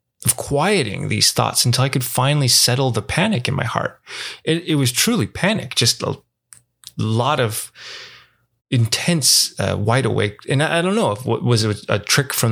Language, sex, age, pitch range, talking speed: English, male, 20-39, 115-135 Hz, 180 wpm